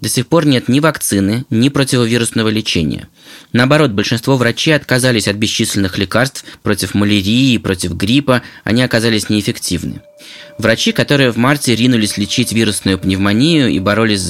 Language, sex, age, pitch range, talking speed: Russian, male, 20-39, 105-145 Hz, 140 wpm